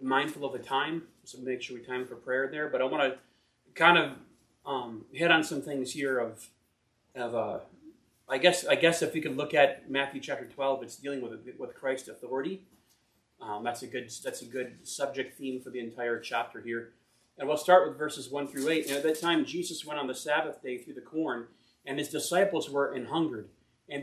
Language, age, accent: English, 30-49, American